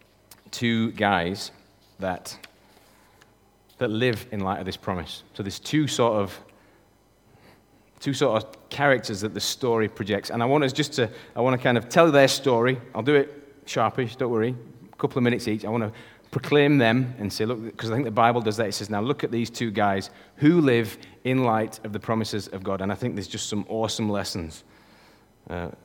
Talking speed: 205 wpm